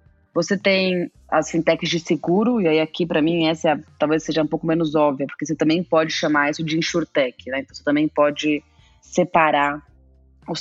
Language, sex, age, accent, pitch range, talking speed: Portuguese, female, 20-39, Brazilian, 145-165 Hz, 185 wpm